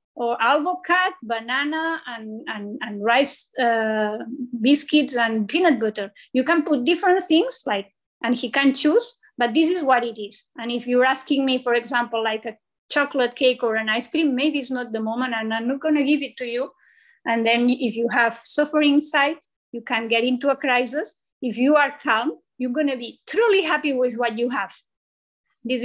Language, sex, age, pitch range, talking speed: English, female, 20-39, 230-290 Hz, 195 wpm